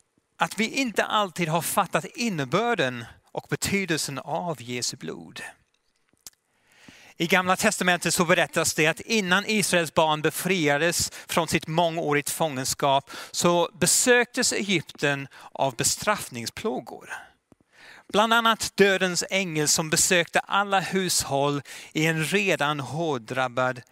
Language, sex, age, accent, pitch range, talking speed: Swedish, male, 30-49, native, 145-190 Hz, 110 wpm